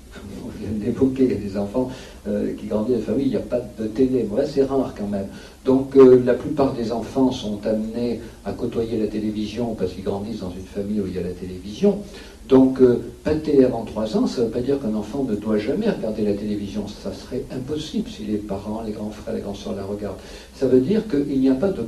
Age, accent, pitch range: 50-69, French, 105-130 Hz